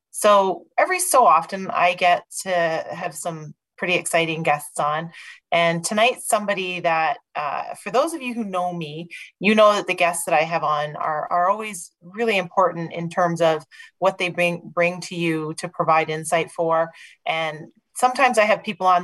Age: 30-49